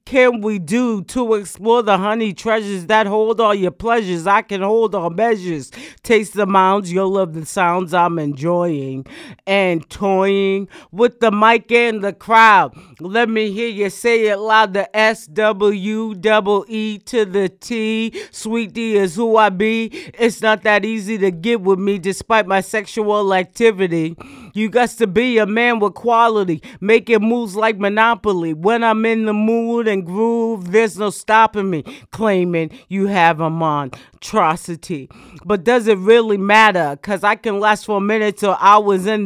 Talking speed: 170 wpm